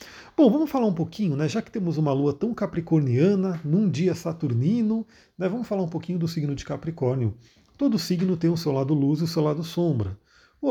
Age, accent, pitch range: 40-59, Brazilian, 135-180 Hz